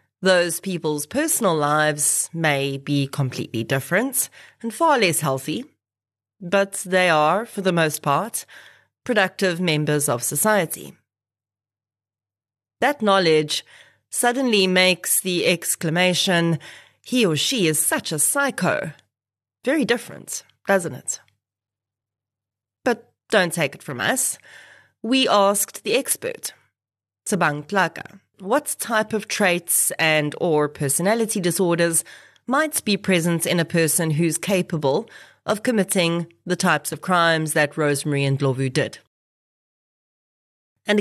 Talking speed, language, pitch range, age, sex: 115 wpm, English, 145-195 Hz, 30-49, female